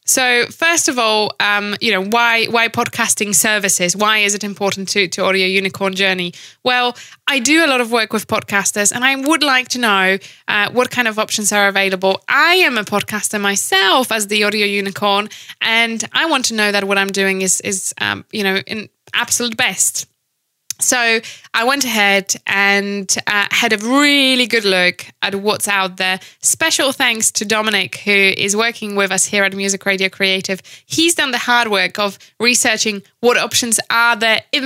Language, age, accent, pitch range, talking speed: English, 20-39, British, 195-240 Hz, 190 wpm